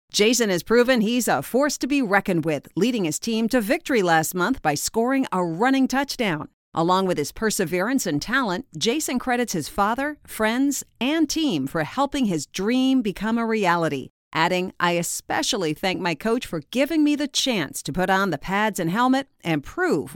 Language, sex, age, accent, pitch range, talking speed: English, female, 40-59, American, 170-235 Hz, 185 wpm